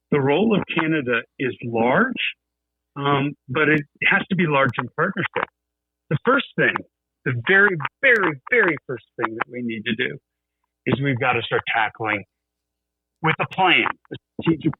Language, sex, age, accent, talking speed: English, male, 50-69, American, 160 wpm